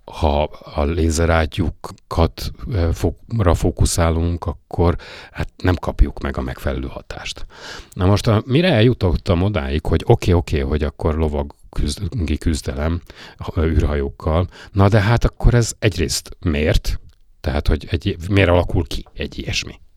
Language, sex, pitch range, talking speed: Hungarian, male, 75-95 Hz, 135 wpm